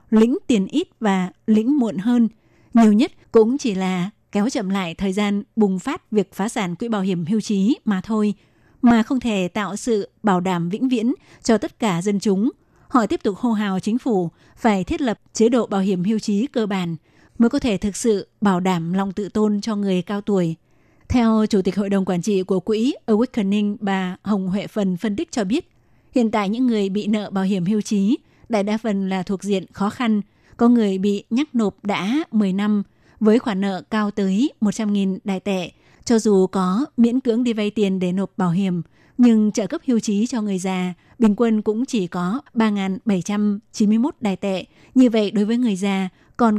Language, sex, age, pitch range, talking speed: Vietnamese, female, 20-39, 195-230 Hz, 210 wpm